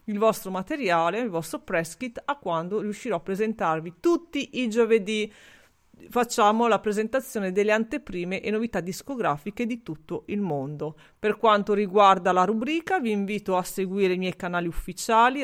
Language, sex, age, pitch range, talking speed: Italian, female, 40-59, 180-230 Hz, 155 wpm